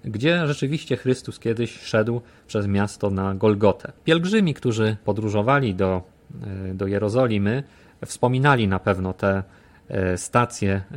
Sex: male